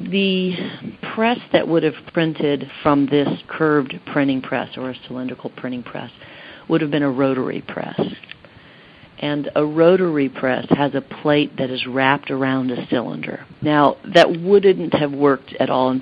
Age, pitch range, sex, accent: 50-69, 130-155 Hz, female, American